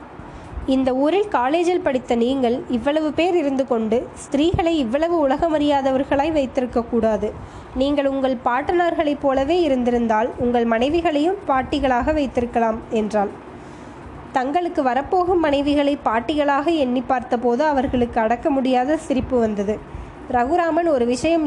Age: 20-39